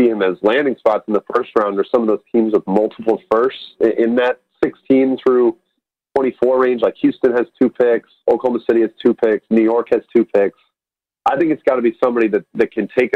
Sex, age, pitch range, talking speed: male, 40-59, 115-140 Hz, 215 wpm